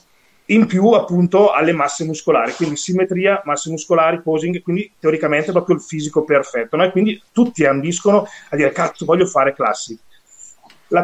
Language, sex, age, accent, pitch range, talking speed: Italian, male, 30-49, native, 135-175 Hz, 160 wpm